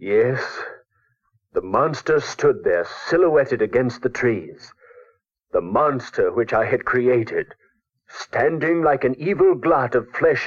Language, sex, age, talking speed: English, male, 60-79, 125 wpm